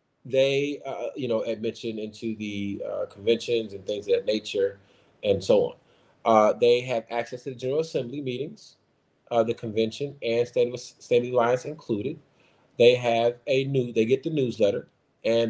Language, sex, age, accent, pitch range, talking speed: English, male, 30-49, American, 105-155 Hz, 170 wpm